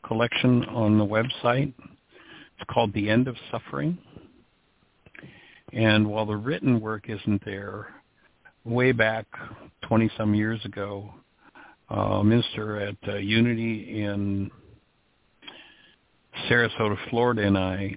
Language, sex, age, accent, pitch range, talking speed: English, male, 60-79, American, 100-115 Hz, 105 wpm